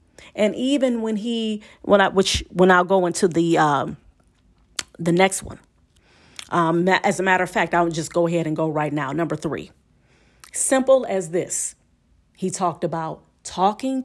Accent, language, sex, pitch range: American, English, female, 175-235 Hz